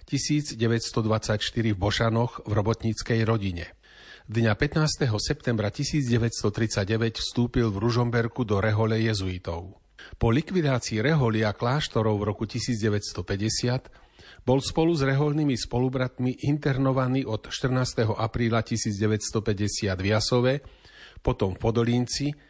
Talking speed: 100 wpm